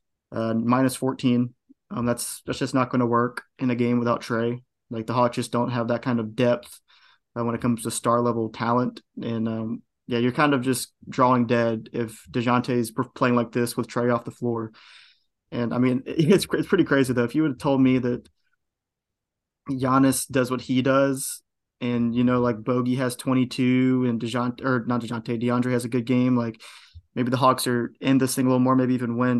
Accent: American